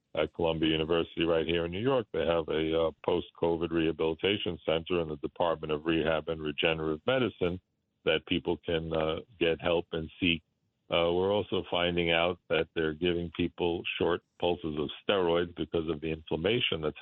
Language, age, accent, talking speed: English, 50-69, American, 175 wpm